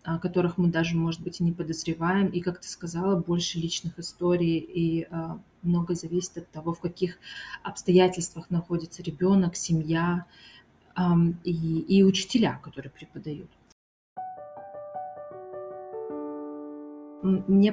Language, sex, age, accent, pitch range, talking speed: Russian, female, 30-49, native, 165-190 Hz, 120 wpm